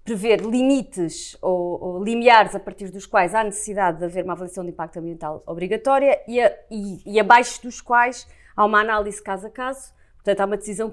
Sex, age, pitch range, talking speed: female, 30-49, 185-235 Hz, 180 wpm